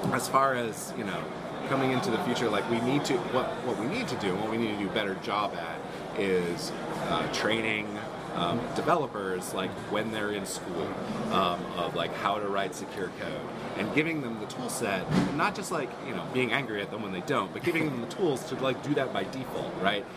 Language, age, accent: German, 30-49, American